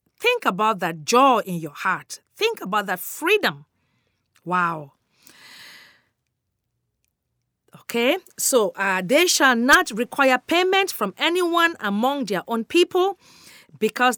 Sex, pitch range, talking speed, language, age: female, 185-280 Hz, 115 wpm, English, 40-59